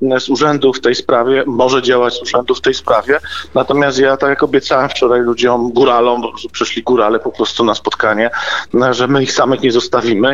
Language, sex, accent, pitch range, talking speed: Polish, male, native, 135-175 Hz, 195 wpm